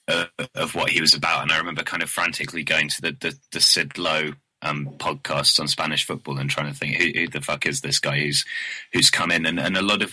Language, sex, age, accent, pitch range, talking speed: English, male, 20-39, British, 75-85 Hz, 260 wpm